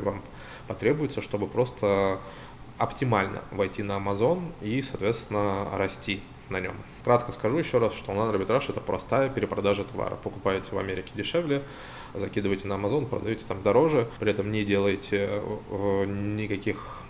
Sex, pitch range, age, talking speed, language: male, 100-115 Hz, 20-39, 135 wpm, Russian